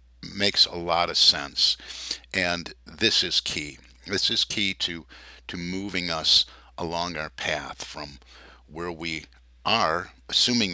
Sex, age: male, 50-69